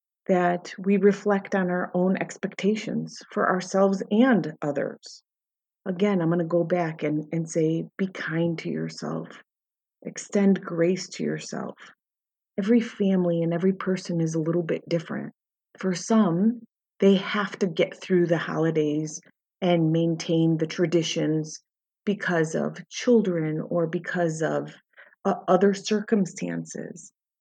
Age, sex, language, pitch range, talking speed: 30-49, female, English, 170-210 Hz, 130 wpm